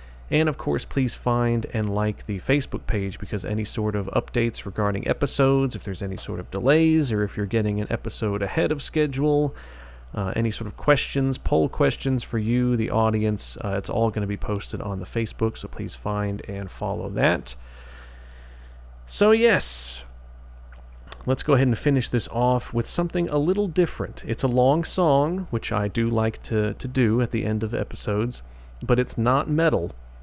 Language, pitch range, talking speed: English, 100-125 Hz, 185 wpm